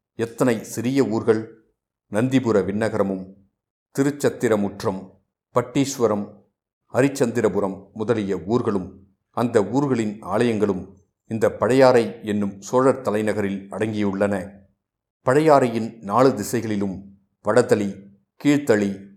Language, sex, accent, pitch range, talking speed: Tamil, male, native, 100-115 Hz, 75 wpm